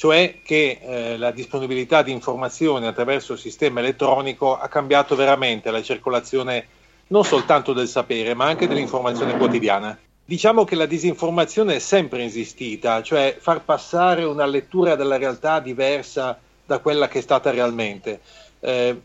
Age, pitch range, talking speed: 40-59, 125-170 Hz, 145 wpm